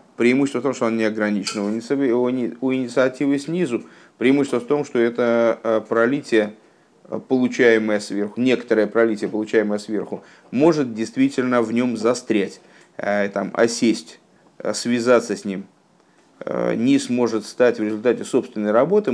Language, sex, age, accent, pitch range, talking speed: Russian, male, 30-49, native, 105-130 Hz, 120 wpm